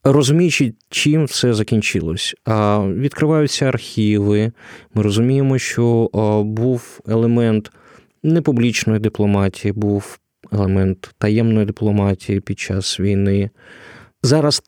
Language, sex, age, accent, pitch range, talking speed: Ukrainian, male, 20-39, native, 100-130 Hz, 90 wpm